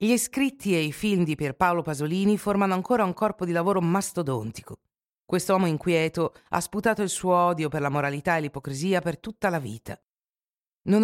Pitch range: 150-200 Hz